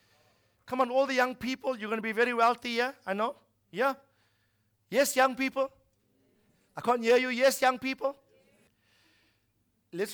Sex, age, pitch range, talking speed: male, 50-69, 135-225 Hz, 160 wpm